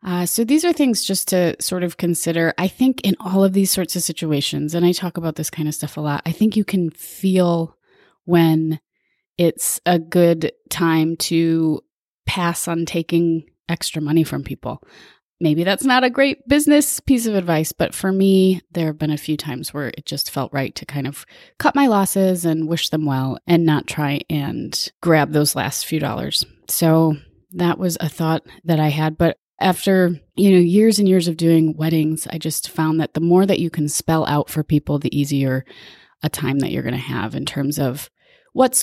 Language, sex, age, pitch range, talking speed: English, female, 30-49, 155-190 Hz, 205 wpm